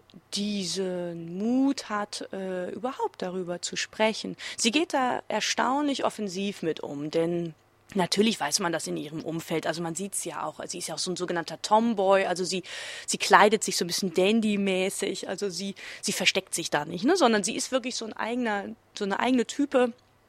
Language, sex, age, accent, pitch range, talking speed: German, female, 20-39, German, 180-220 Hz, 185 wpm